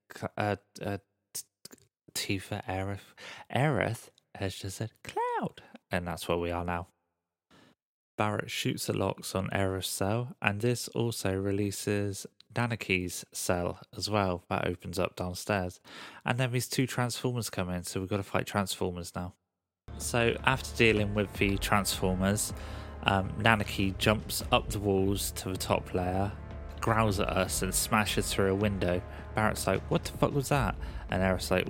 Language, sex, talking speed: English, male, 155 wpm